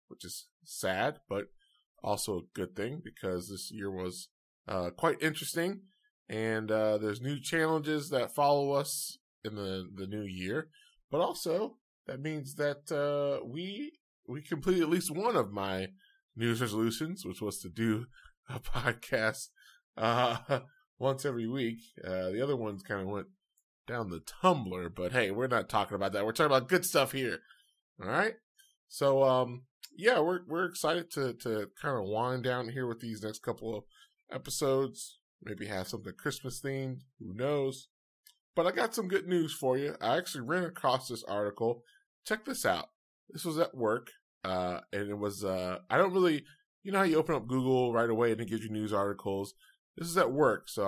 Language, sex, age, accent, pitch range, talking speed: English, male, 20-39, American, 105-160 Hz, 180 wpm